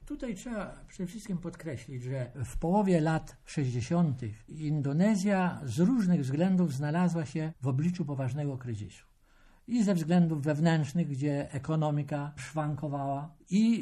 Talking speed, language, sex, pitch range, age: 120 wpm, Polish, male, 130-180 Hz, 60-79